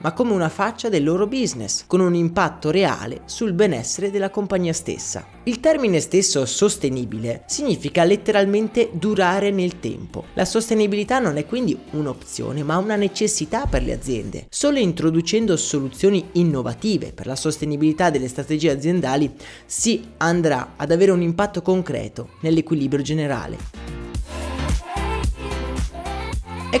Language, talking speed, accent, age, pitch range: Italian, 130 wpm, native, 30-49, 140-195 Hz